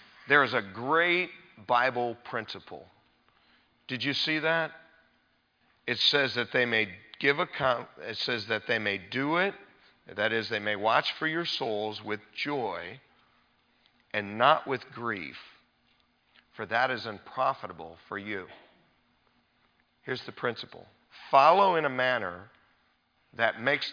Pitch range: 120-175 Hz